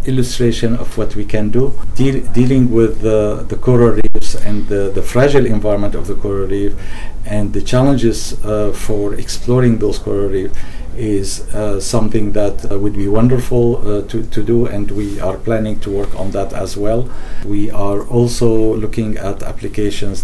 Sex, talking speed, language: male, 170 wpm, English